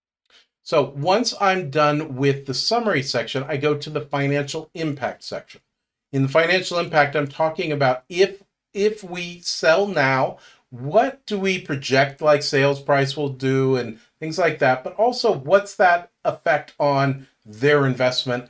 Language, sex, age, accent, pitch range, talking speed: English, male, 40-59, American, 130-175 Hz, 155 wpm